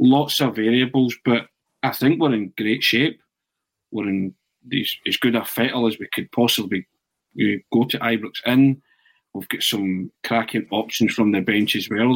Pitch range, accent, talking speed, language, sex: 105-125 Hz, British, 180 wpm, English, male